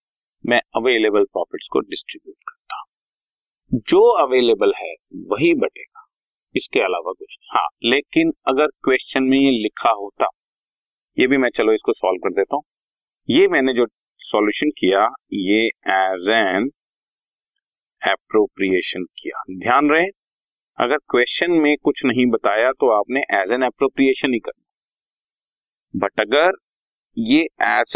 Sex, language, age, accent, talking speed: male, Hindi, 40-59, native, 130 wpm